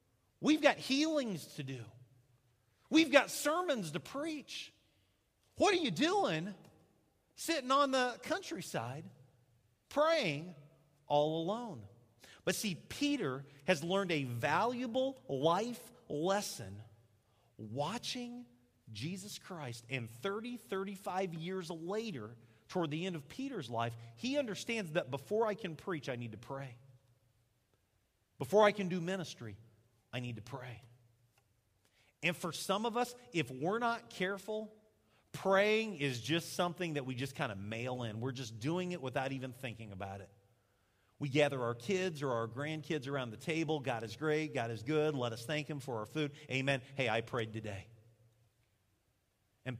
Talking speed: 145 wpm